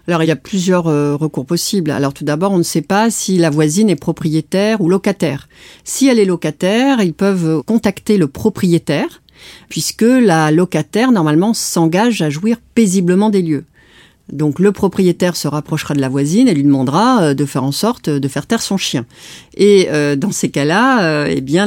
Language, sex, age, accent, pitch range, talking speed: French, female, 50-69, French, 145-190 Hz, 185 wpm